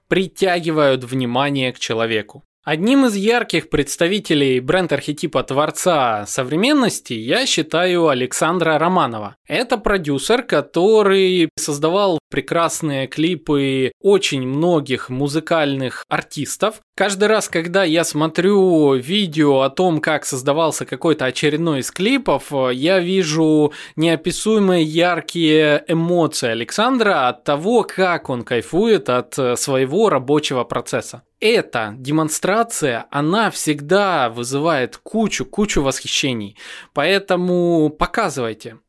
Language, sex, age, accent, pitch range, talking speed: Russian, male, 20-39, native, 140-195 Hz, 95 wpm